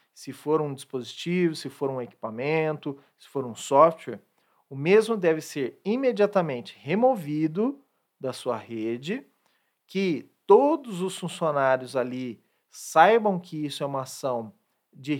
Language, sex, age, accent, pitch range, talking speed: Portuguese, male, 40-59, Brazilian, 135-200 Hz, 130 wpm